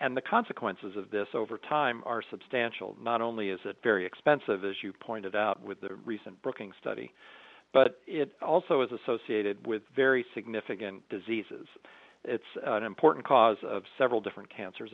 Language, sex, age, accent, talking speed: English, male, 50-69, American, 165 wpm